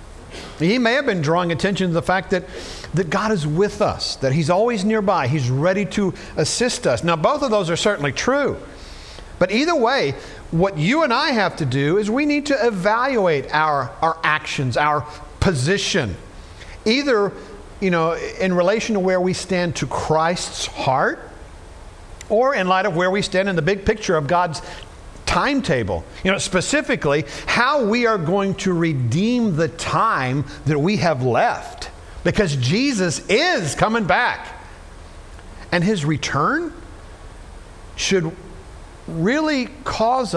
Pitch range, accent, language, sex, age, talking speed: 130-210 Hz, American, English, male, 50-69, 155 wpm